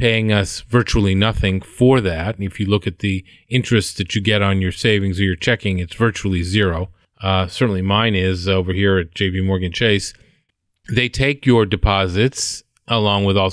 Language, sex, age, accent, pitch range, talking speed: English, male, 40-59, American, 100-125 Hz, 185 wpm